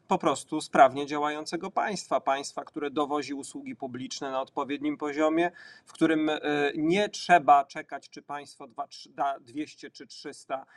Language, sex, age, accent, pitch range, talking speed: Polish, male, 40-59, native, 145-175 Hz, 135 wpm